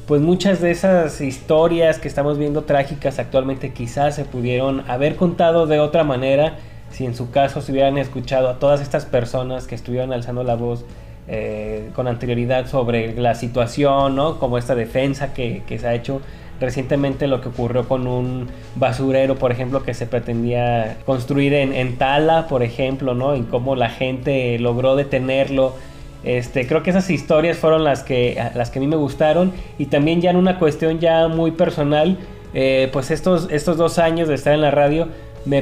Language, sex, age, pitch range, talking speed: Spanish, male, 20-39, 125-150 Hz, 180 wpm